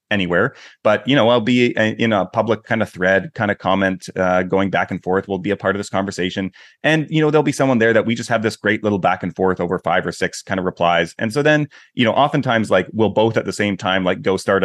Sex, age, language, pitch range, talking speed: male, 30-49, English, 100-125 Hz, 275 wpm